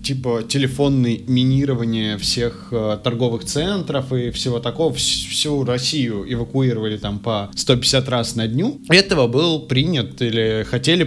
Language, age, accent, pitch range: Russian, 20-39, native, 120-140 Hz